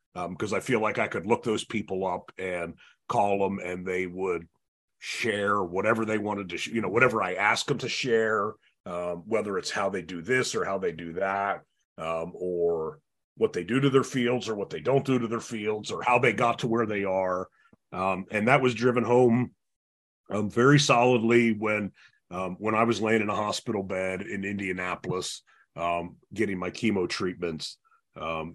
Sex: male